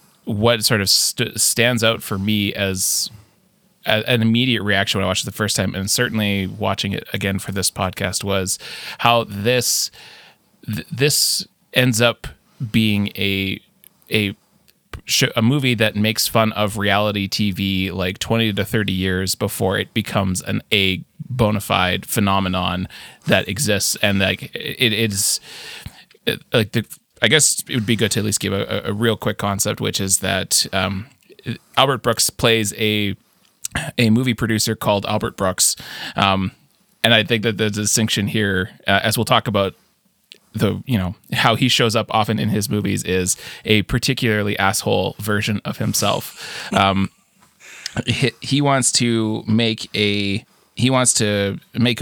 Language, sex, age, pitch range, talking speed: English, male, 20-39, 100-115 Hz, 155 wpm